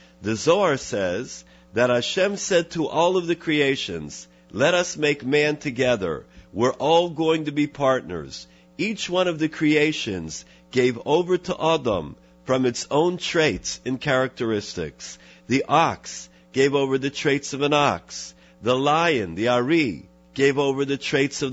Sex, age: male, 50-69